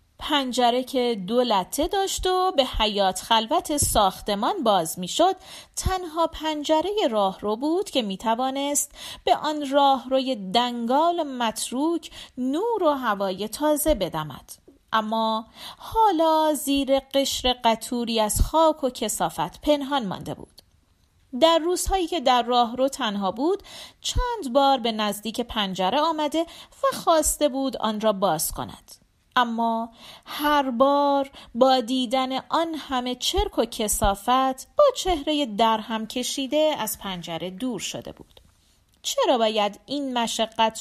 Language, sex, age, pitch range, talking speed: Persian, female, 40-59, 220-300 Hz, 125 wpm